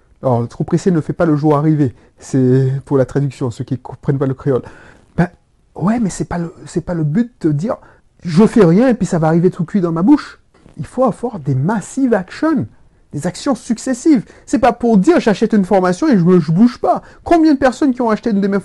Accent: French